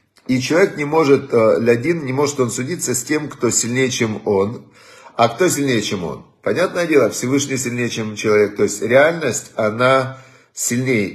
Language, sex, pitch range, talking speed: Russian, male, 110-140 Hz, 165 wpm